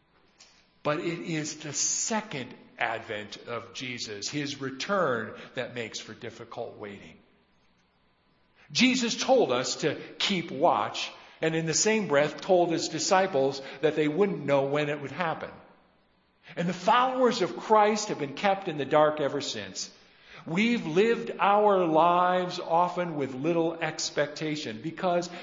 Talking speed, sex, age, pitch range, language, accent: 140 wpm, male, 50-69, 130-175 Hz, English, American